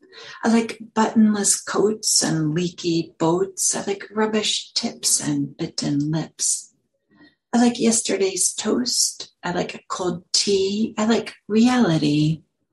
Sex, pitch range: female, 160-220 Hz